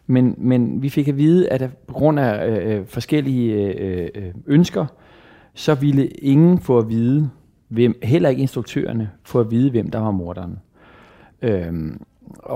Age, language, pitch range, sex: 40-59, Danish, 105-135 Hz, male